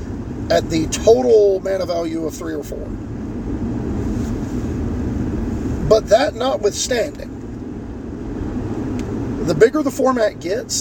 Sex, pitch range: male, 145-210 Hz